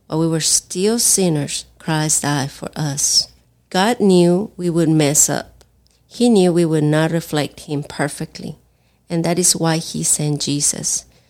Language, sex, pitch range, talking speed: English, female, 145-170 Hz, 160 wpm